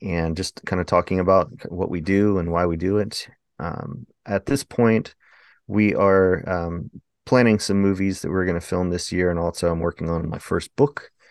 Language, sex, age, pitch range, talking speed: English, male, 30-49, 85-105 Hz, 205 wpm